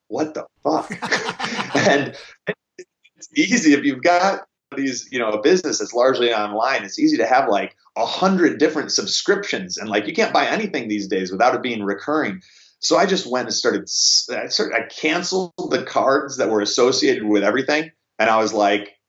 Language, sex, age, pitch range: English, male, 30-49, 100-130 Hz